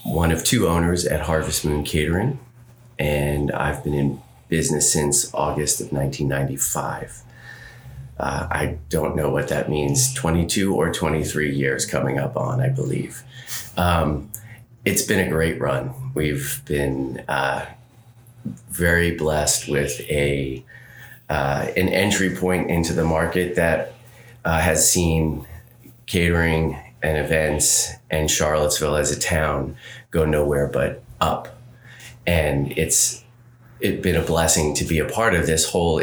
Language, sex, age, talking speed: English, male, 30-49, 135 wpm